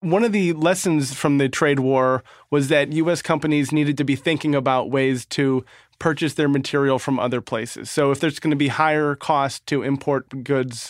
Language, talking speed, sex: English, 200 wpm, male